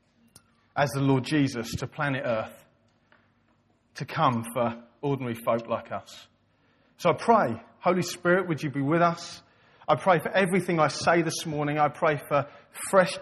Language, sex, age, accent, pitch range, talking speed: English, male, 40-59, British, 135-180 Hz, 165 wpm